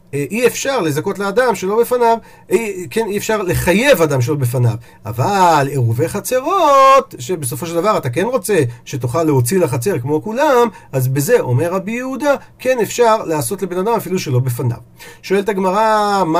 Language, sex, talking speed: Hebrew, male, 160 wpm